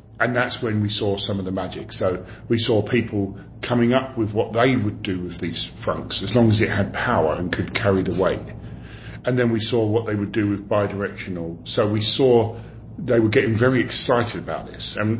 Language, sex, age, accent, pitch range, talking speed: English, female, 40-59, British, 100-115 Hz, 215 wpm